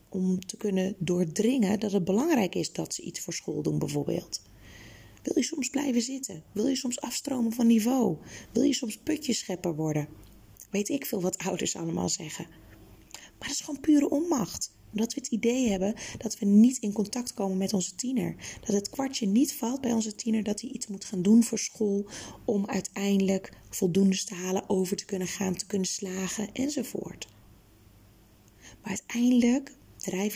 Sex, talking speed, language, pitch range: female, 180 wpm, Dutch, 165-220 Hz